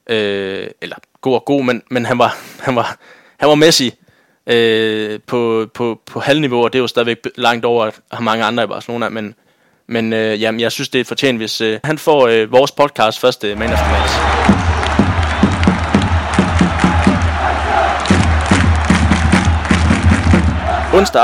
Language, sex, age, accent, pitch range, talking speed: Danish, male, 20-39, native, 110-135 Hz, 145 wpm